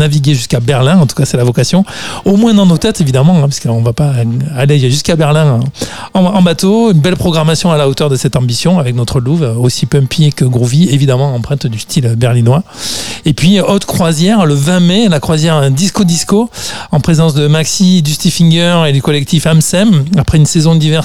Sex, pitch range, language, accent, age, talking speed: male, 135-165 Hz, French, French, 40-59, 210 wpm